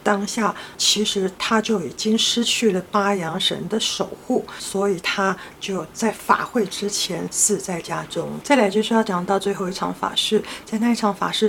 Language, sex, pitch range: Chinese, female, 195-230 Hz